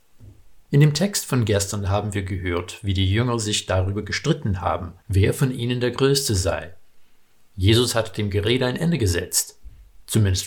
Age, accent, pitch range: 50-69, German, 95-125 Hz